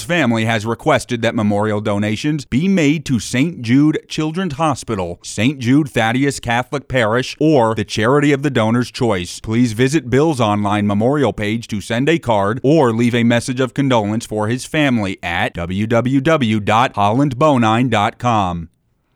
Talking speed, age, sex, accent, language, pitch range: 145 wpm, 30-49, male, American, English, 110-135 Hz